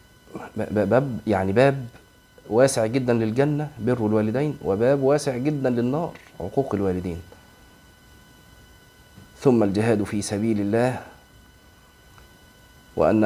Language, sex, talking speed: Arabic, male, 90 wpm